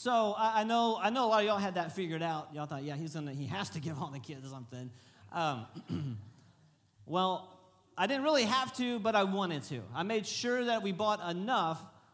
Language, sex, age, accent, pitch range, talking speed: English, male, 40-59, American, 135-210 Hz, 215 wpm